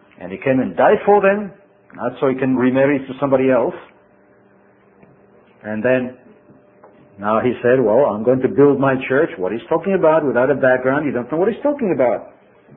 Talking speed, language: 195 wpm, English